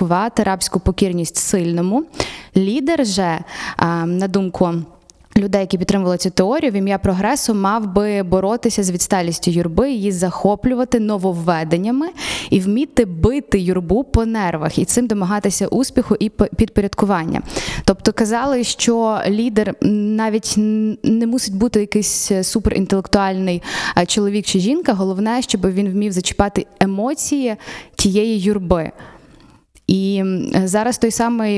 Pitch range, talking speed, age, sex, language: 190-225 Hz, 115 wpm, 20-39, female, Ukrainian